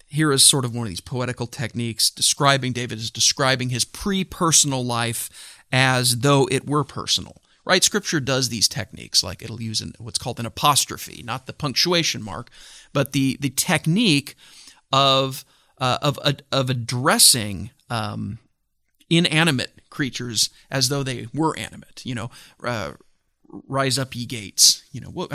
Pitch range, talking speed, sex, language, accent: 115-145 Hz, 155 wpm, male, English, American